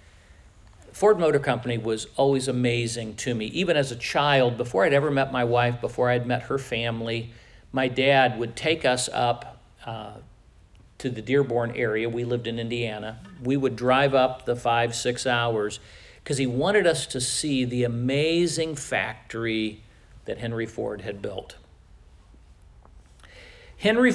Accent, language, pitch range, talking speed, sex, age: American, English, 110-145 Hz, 150 wpm, male, 50-69